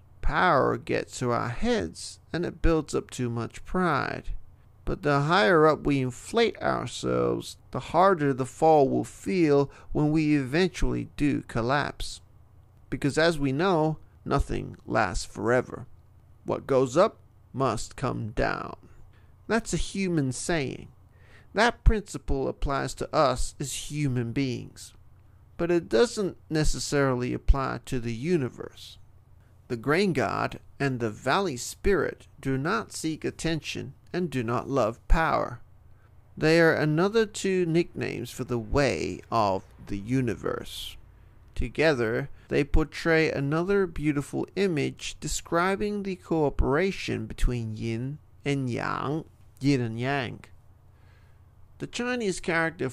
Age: 40-59